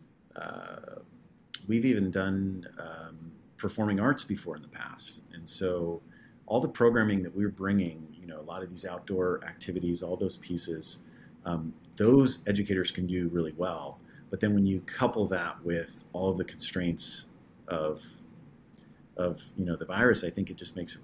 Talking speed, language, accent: 175 wpm, English, American